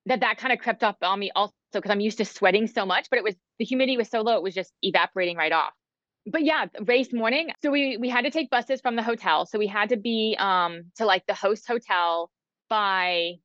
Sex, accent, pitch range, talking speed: female, American, 180-235 Hz, 250 wpm